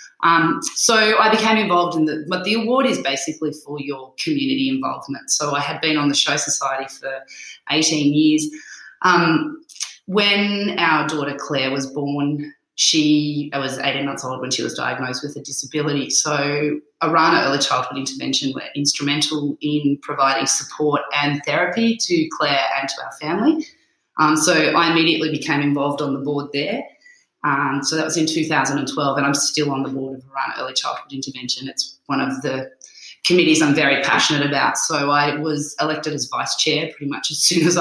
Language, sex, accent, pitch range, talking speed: English, female, Australian, 140-160 Hz, 180 wpm